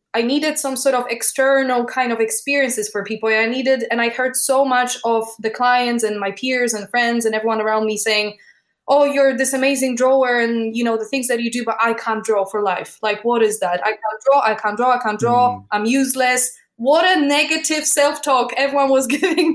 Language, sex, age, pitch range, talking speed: English, female, 20-39, 230-280 Hz, 220 wpm